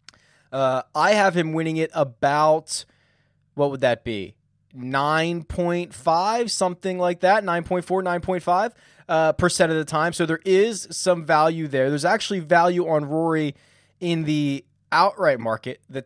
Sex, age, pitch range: male, 20-39, 130-170 Hz